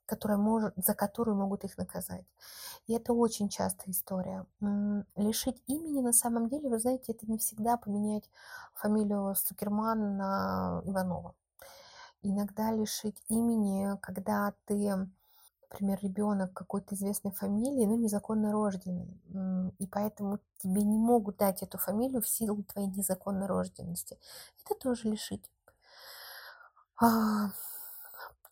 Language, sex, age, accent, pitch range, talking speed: Russian, female, 30-49, native, 195-230 Hz, 115 wpm